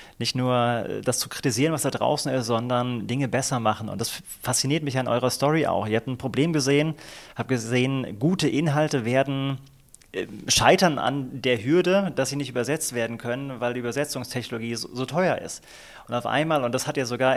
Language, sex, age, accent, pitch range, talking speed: German, male, 30-49, German, 125-150 Hz, 195 wpm